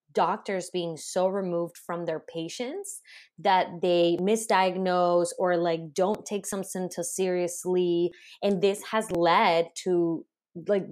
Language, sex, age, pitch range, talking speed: English, female, 20-39, 165-195 Hz, 125 wpm